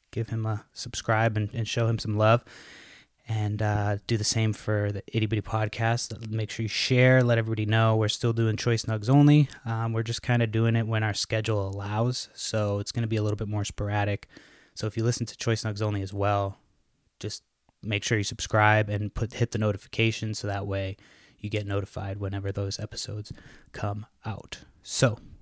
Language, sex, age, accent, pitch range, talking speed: English, male, 20-39, American, 100-115 Hz, 205 wpm